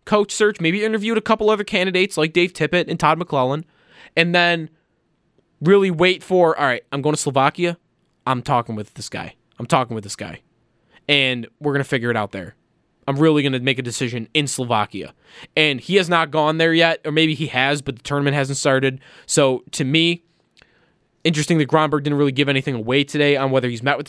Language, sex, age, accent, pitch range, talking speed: English, male, 20-39, American, 135-170 Hz, 210 wpm